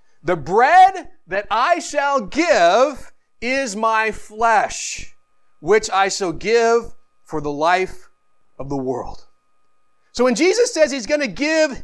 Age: 30-49